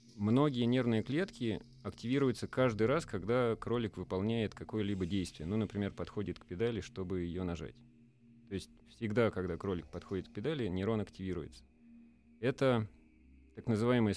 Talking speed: 135 wpm